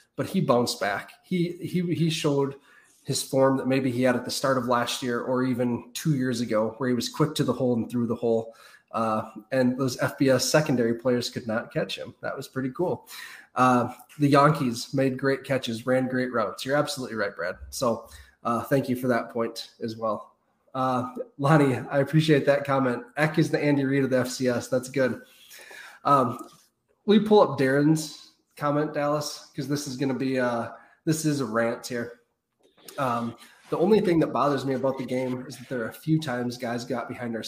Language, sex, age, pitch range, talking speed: English, male, 20-39, 120-140 Hz, 205 wpm